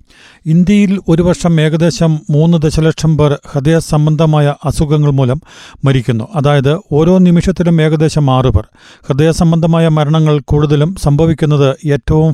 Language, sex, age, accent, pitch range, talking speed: Malayalam, male, 40-59, native, 140-160 Hz, 110 wpm